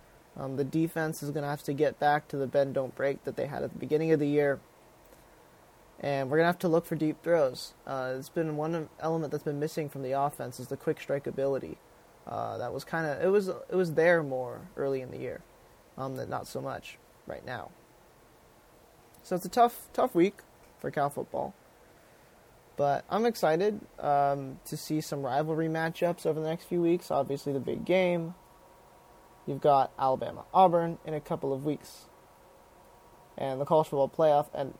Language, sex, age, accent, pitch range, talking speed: English, male, 20-39, American, 135-170 Hz, 195 wpm